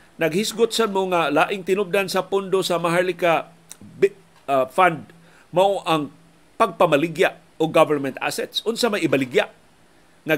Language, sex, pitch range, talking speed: Filipino, male, 155-195 Hz, 125 wpm